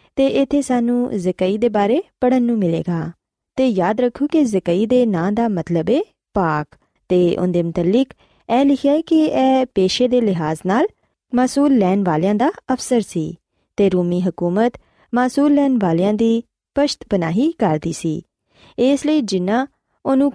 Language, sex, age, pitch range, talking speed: Punjabi, female, 20-39, 180-260 Hz, 155 wpm